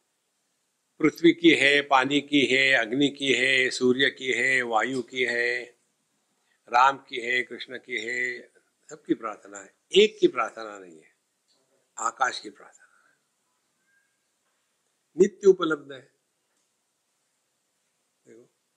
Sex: male